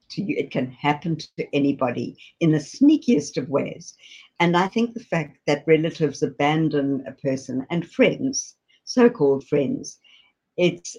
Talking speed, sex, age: 145 wpm, female, 60-79